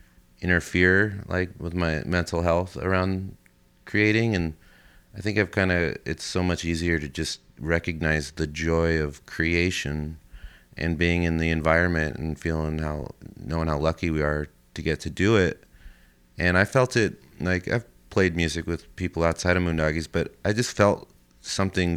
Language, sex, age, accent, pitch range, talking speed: English, male, 30-49, American, 75-95 Hz, 165 wpm